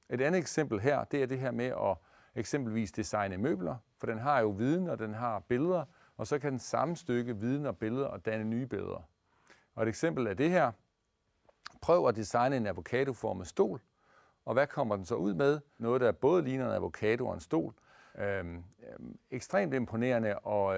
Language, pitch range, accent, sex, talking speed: Danish, 105-135 Hz, native, male, 195 wpm